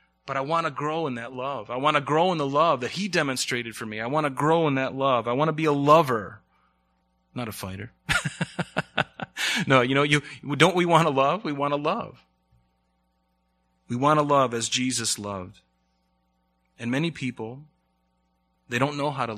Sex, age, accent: male, 30-49, American